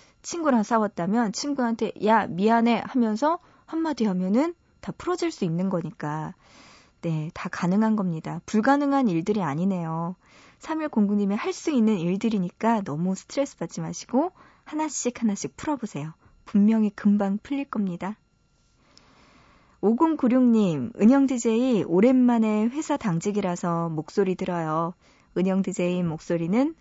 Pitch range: 180-250 Hz